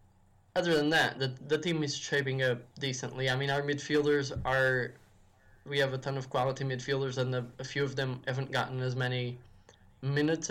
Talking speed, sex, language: 190 wpm, male, English